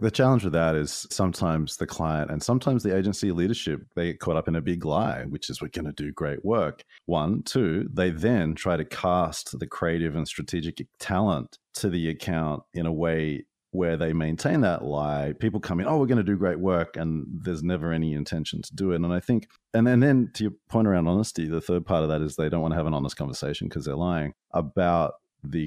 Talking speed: 235 wpm